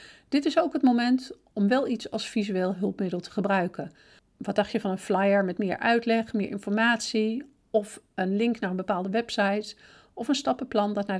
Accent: Dutch